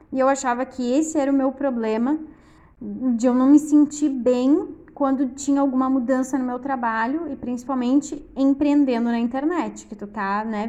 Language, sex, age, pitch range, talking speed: Portuguese, female, 10-29, 235-295 Hz, 175 wpm